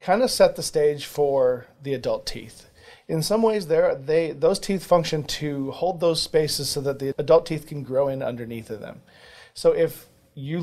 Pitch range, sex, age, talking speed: 135-165 Hz, male, 40-59, 190 wpm